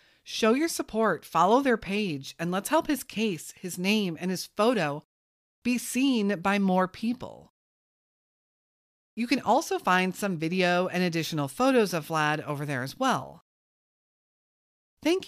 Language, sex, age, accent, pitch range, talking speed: English, female, 40-59, American, 165-235 Hz, 145 wpm